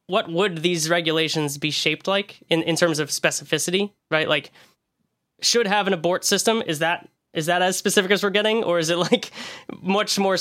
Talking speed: 195 wpm